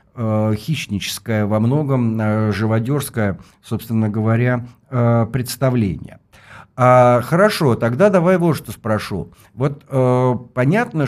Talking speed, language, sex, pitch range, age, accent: 90 wpm, Russian, male, 100-130 Hz, 50-69, native